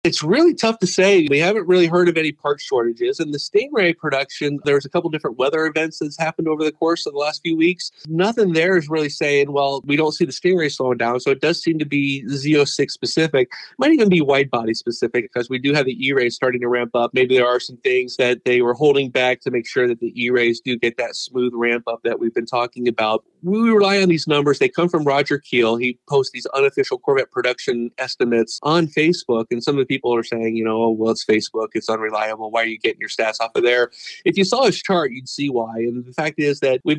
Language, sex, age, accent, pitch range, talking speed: English, male, 40-59, American, 120-160 Hz, 245 wpm